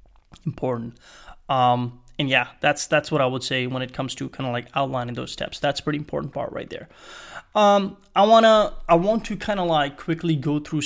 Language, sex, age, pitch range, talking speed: English, male, 20-39, 130-160 Hz, 210 wpm